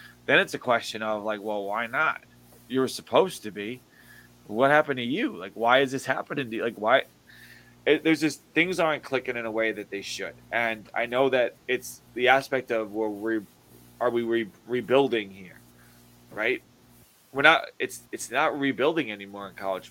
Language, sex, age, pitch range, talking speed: English, male, 20-39, 105-125 Hz, 195 wpm